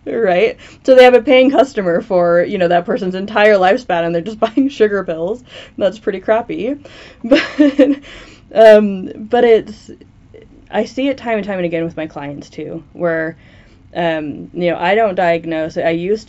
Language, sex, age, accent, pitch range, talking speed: English, female, 20-39, American, 155-185 Hz, 175 wpm